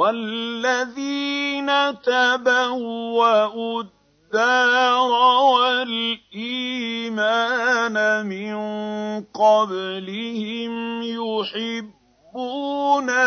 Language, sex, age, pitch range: Arabic, male, 50-69, 185-245 Hz